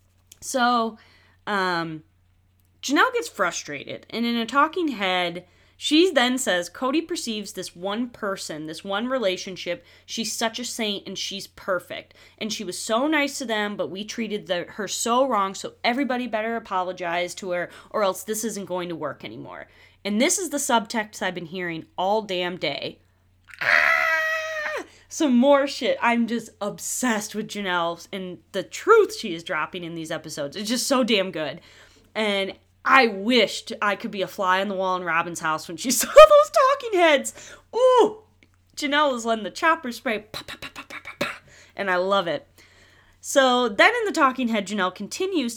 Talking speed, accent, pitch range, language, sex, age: 170 wpm, American, 180-255 Hz, English, female, 20-39